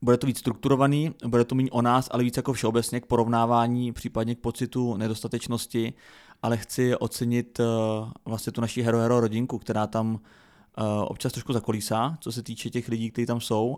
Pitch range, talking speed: 110-125 Hz, 175 wpm